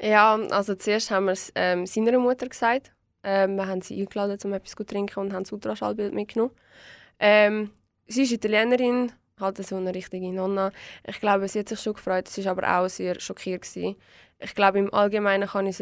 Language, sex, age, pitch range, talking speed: German, female, 20-39, 185-210 Hz, 205 wpm